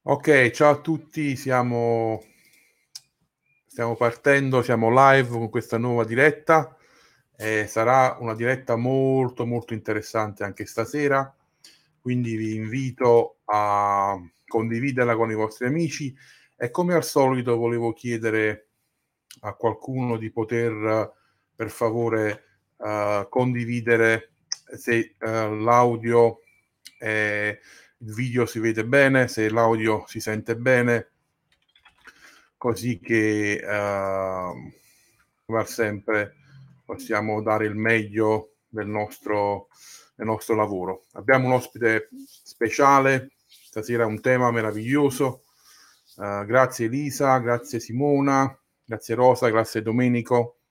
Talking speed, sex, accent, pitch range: 110 wpm, male, native, 110-130 Hz